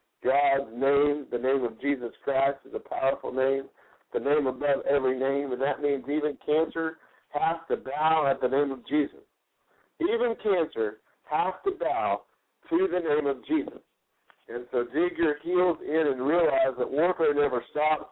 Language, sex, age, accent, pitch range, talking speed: English, male, 50-69, American, 135-180 Hz, 170 wpm